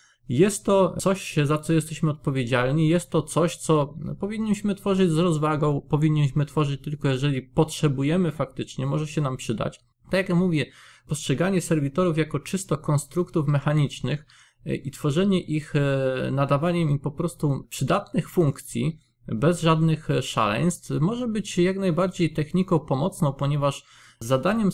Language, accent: Polish, native